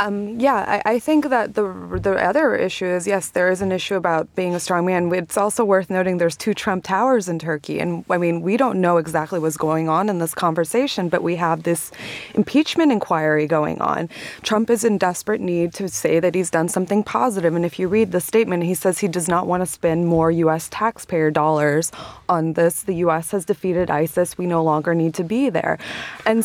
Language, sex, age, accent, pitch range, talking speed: English, female, 20-39, American, 170-210 Hz, 220 wpm